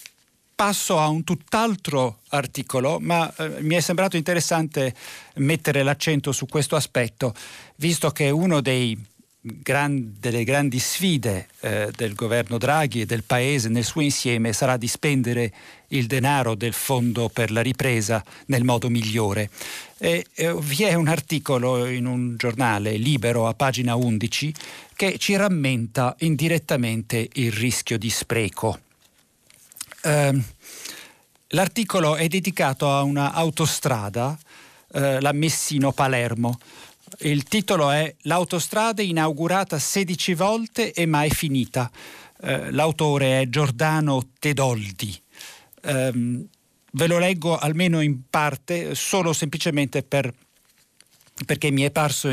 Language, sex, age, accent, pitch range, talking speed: Italian, male, 50-69, native, 120-160 Hz, 115 wpm